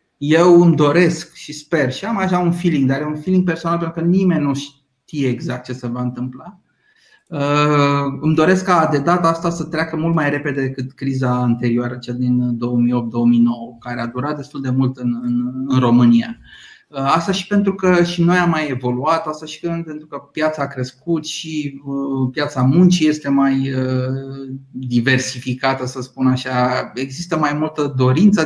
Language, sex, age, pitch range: Romanian, male, 30-49, 125-160 Hz